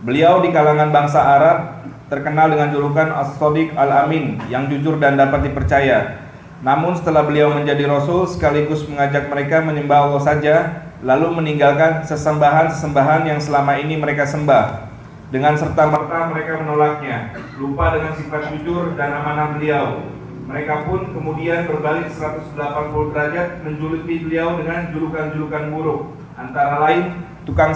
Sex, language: male, Indonesian